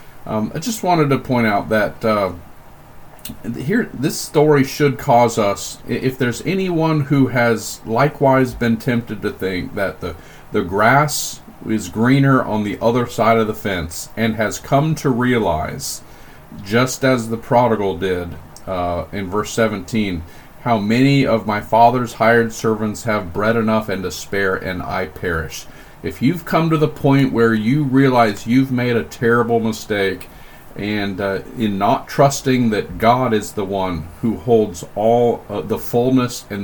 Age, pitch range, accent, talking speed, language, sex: 40-59, 105-130 Hz, American, 160 wpm, English, male